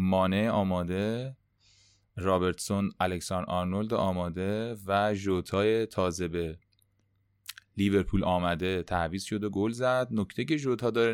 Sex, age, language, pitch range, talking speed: male, 20-39, Persian, 90-110 Hz, 115 wpm